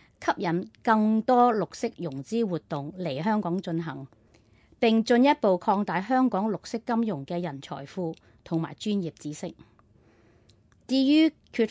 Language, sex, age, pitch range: Chinese, female, 30-49, 170-230 Hz